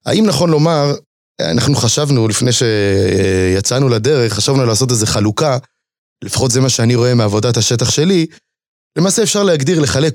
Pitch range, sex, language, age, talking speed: 120-155 Hz, male, Hebrew, 30-49, 140 wpm